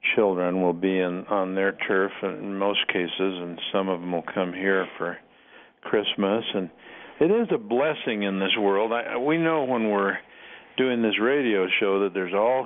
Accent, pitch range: American, 95-120 Hz